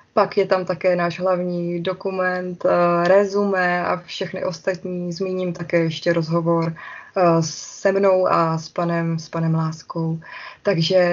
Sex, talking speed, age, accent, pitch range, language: female, 125 wpm, 20-39, native, 170-195 Hz, Czech